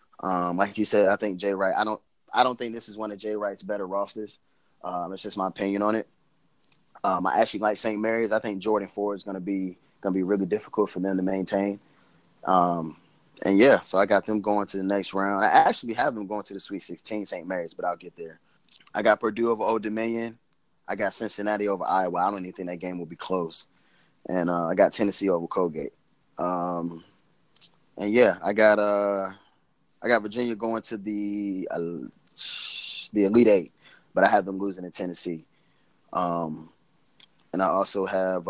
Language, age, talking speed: English, 20-39, 205 wpm